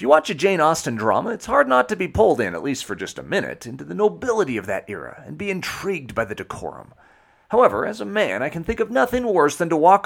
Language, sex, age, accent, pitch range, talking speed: English, male, 40-59, American, 130-195 Hz, 260 wpm